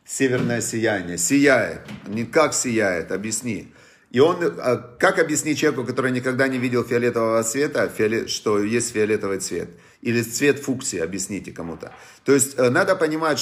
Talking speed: 145 wpm